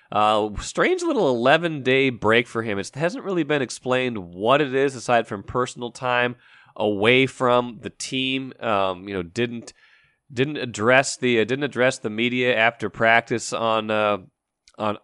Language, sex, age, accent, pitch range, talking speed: English, male, 30-49, American, 105-125 Hz, 160 wpm